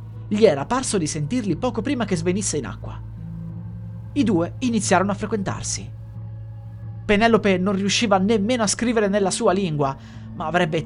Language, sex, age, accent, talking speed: Italian, male, 30-49, native, 150 wpm